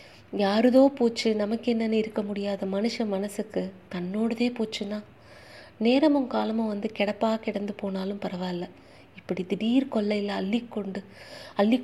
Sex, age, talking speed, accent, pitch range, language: female, 30-49, 115 wpm, native, 200-240 Hz, Tamil